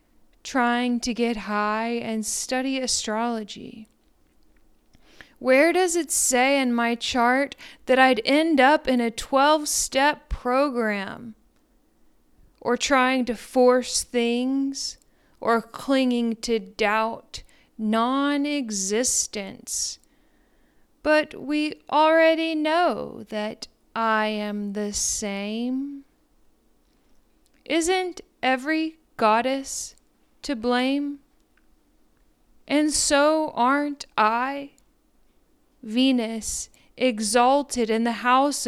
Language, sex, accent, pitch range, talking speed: English, female, American, 225-280 Hz, 85 wpm